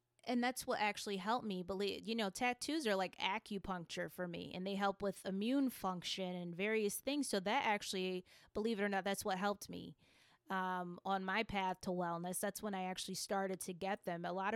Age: 20-39